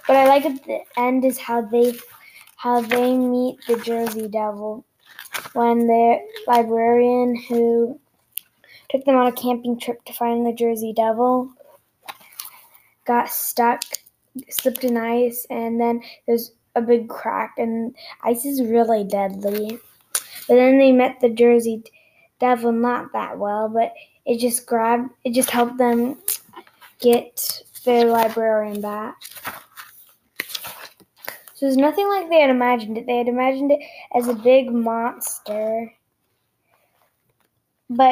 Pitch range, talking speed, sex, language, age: 230-260 Hz, 135 wpm, female, English, 10-29